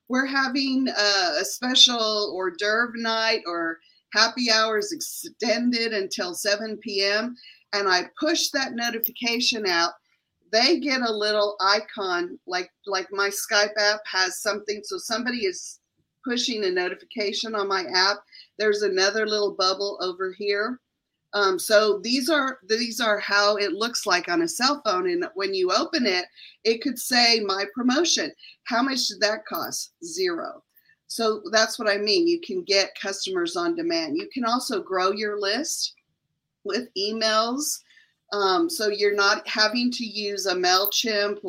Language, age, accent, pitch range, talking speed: English, 40-59, American, 200-250 Hz, 150 wpm